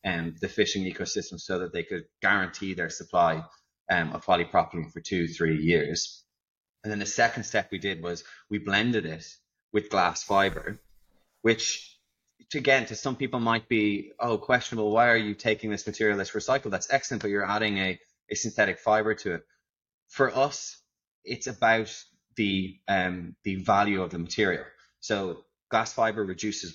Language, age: English, 20-39